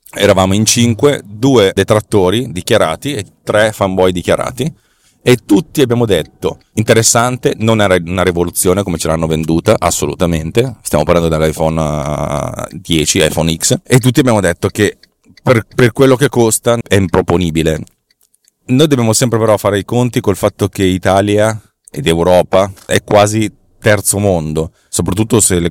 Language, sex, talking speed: Italian, male, 145 wpm